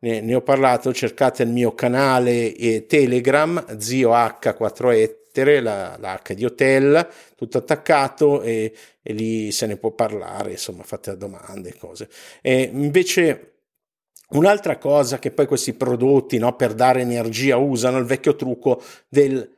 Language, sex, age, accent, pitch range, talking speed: Italian, male, 50-69, native, 115-145 Hz, 135 wpm